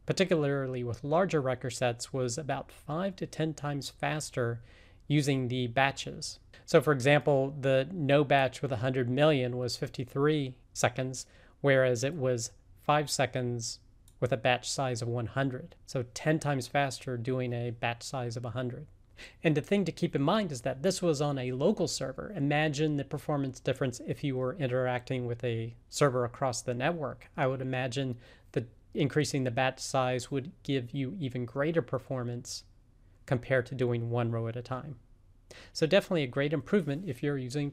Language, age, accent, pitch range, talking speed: English, 40-59, American, 125-150 Hz, 170 wpm